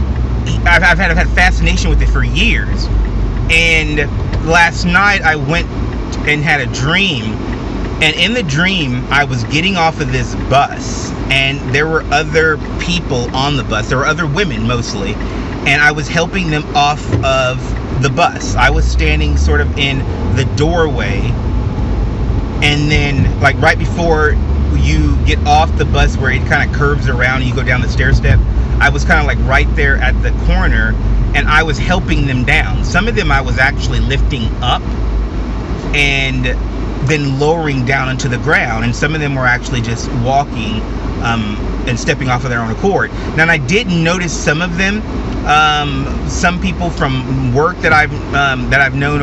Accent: American